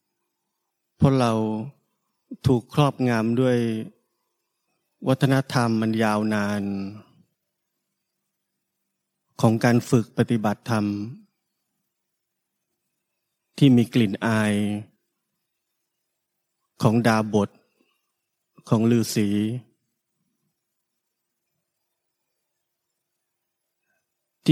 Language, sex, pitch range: Thai, male, 110-130 Hz